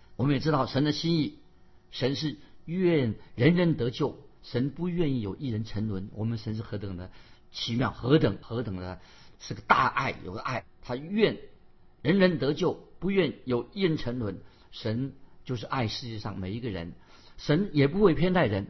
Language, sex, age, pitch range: Chinese, male, 50-69, 110-150 Hz